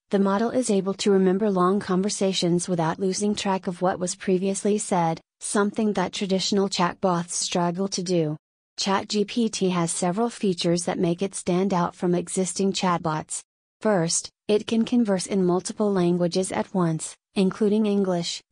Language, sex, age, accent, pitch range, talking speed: English, female, 30-49, American, 180-200 Hz, 150 wpm